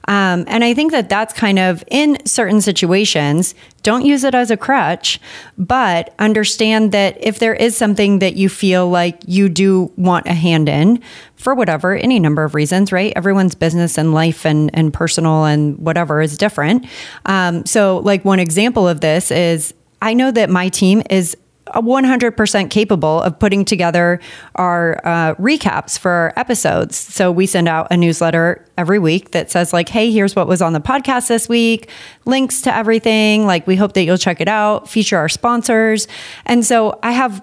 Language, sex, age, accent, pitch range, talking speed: English, female, 30-49, American, 175-225 Hz, 185 wpm